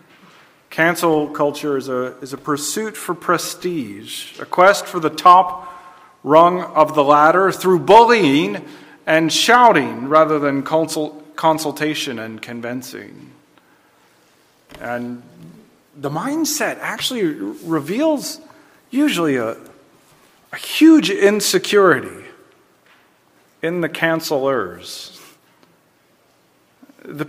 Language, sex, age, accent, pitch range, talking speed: English, male, 40-59, American, 140-195 Hz, 95 wpm